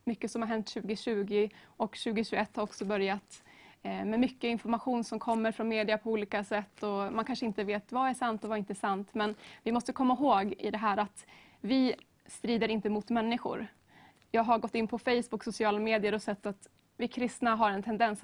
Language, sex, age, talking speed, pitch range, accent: Swedish, female, 20-39, 210 wpm, 210-235 Hz, native